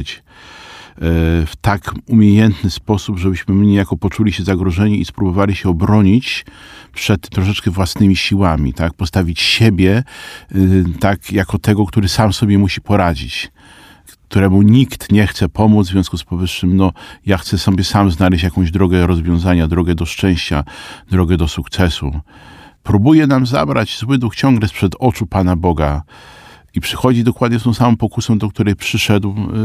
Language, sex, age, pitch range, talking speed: Polish, male, 40-59, 95-130 Hz, 145 wpm